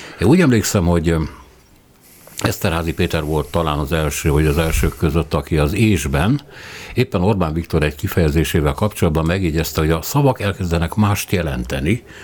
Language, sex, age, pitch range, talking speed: Hungarian, male, 60-79, 75-100 Hz, 145 wpm